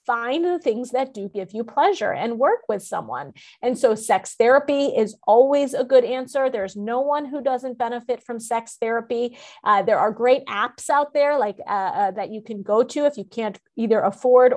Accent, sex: American, female